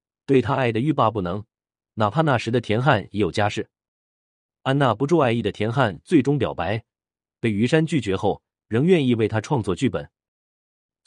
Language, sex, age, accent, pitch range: Chinese, male, 30-49, native, 100-135 Hz